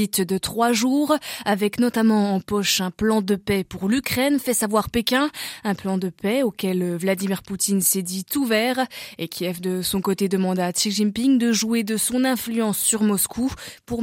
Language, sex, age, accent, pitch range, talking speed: French, female, 20-39, French, 195-245 Hz, 190 wpm